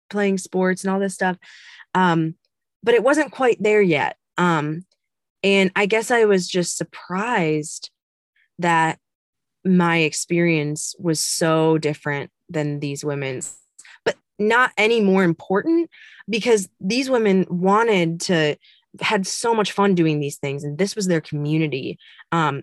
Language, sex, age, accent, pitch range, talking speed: English, female, 20-39, American, 145-190 Hz, 140 wpm